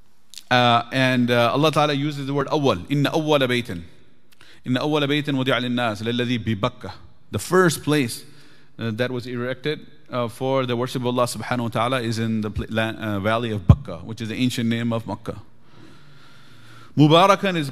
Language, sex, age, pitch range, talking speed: English, male, 30-49, 110-135 Hz, 145 wpm